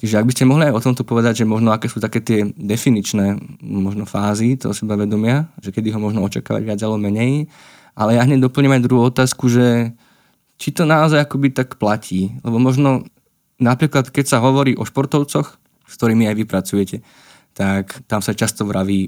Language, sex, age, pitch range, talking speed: Slovak, male, 20-39, 100-120 Hz, 185 wpm